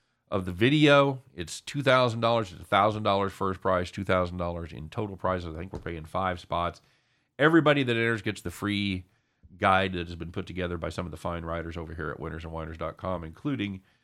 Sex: male